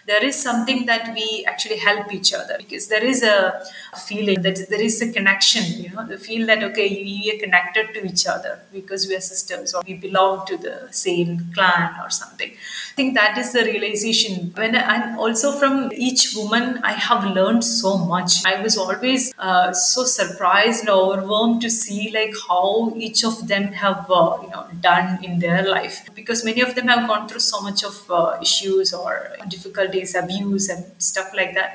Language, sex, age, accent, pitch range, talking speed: English, female, 30-49, Indian, 190-230 Hz, 195 wpm